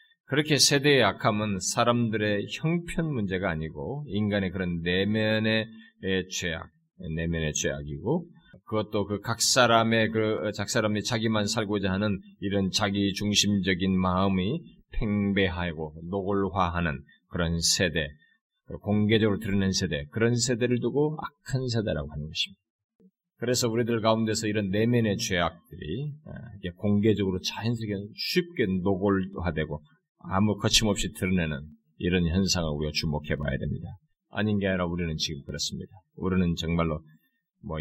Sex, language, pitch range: male, Korean, 85-110 Hz